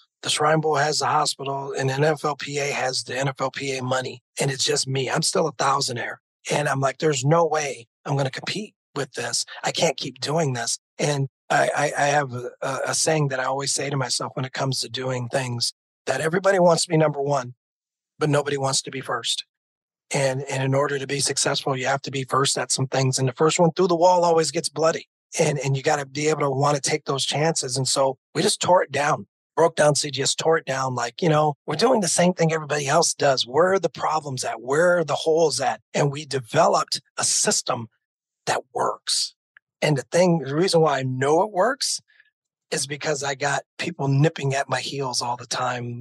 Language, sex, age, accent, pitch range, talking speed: English, male, 40-59, American, 130-155 Hz, 225 wpm